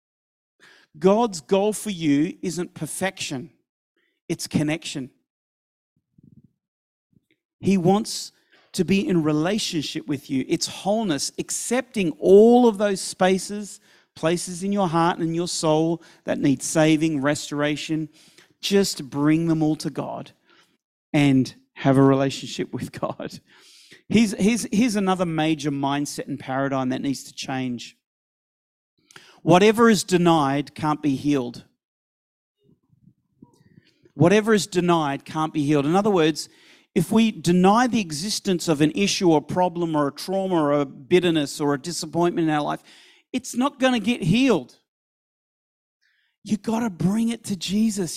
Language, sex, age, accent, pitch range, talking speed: English, male, 40-59, Australian, 150-205 Hz, 135 wpm